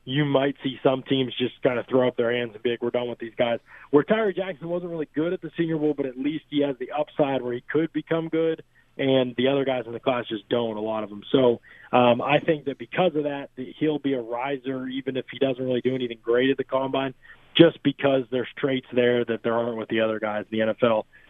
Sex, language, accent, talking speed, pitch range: male, English, American, 260 wpm, 120-140 Hz